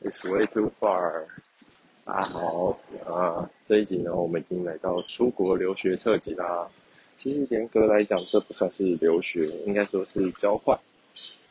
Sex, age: male, 20-39